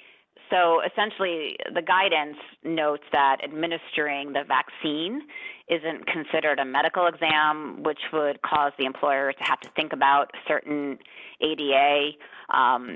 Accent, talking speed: American, 125 wpm